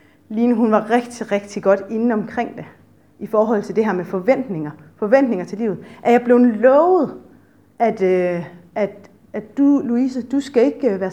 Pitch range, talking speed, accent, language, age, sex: 210-280 Hz, 175 wpm, native, Danish, 30-49, female